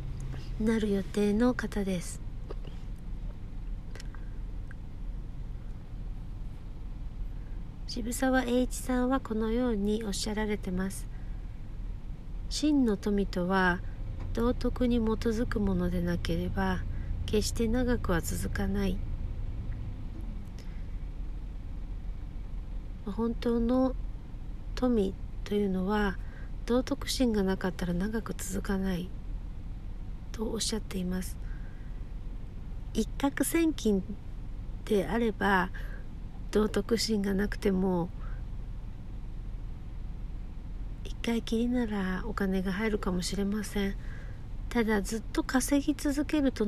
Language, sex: Japanese, female